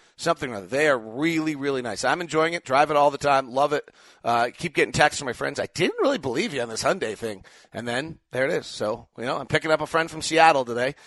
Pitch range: 130-165 Hz